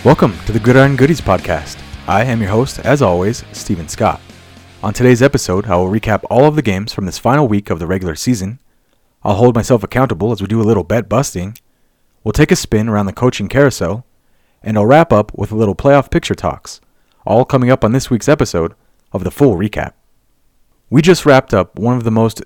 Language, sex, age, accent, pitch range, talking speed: English, male, 30-49, American, 100-135 Hz, 215 wpm